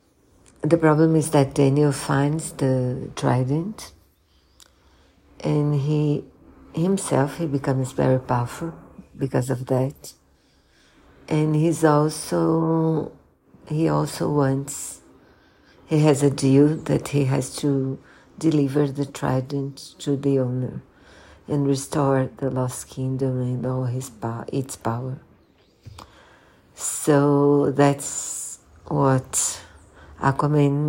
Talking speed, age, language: 100 wpm, 60-79, Portuguese